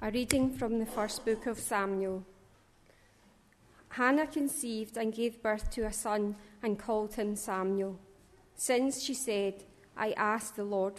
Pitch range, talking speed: 200-240 Hz, 145 wpm